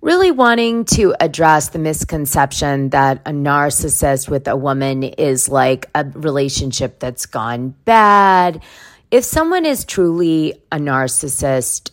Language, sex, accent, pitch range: English, female, American, 140-190 Hz